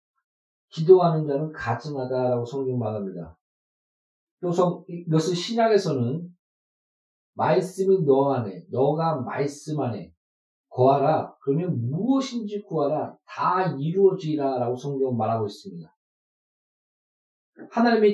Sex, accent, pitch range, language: male, native, 140-200 Hz, Korean